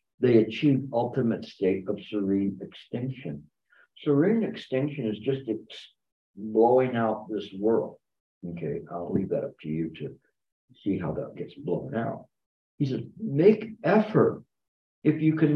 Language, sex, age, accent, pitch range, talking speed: English, male, 60-79, American, 100-150 Hz, 140 wpm